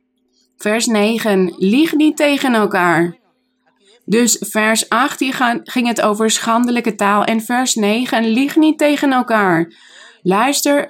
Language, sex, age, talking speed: Dutch, female, 20-39, 120 wpm